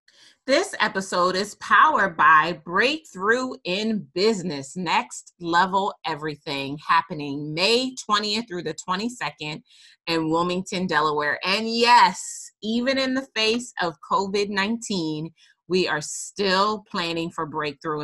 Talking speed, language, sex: 115 wpm, English, female